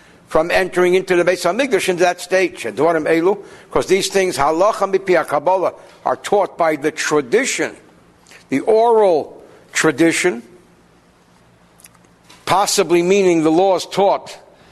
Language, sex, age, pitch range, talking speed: English, male, 60-79, 140-190 Hz, 110 wpm